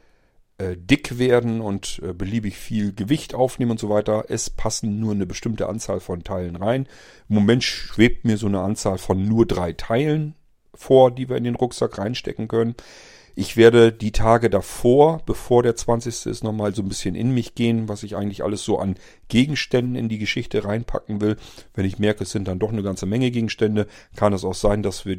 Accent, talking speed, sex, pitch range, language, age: German, 200 wpm, male, 95-120 Hz, German, 40-59